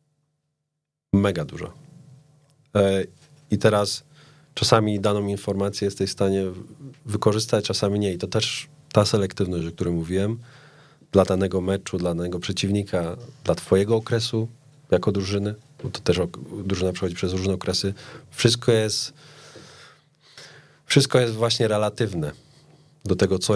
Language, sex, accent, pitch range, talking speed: Polish, male, native, 95-140 Hz, 125 wpm